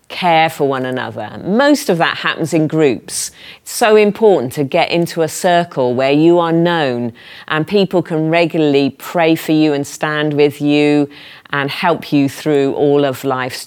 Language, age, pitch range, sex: English, 40-59, 140-170 Hz, female